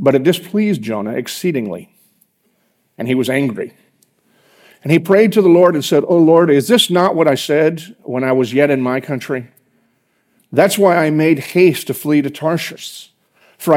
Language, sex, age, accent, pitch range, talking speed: English, male, 50-69, American, 130-175 Hz, 185 wpm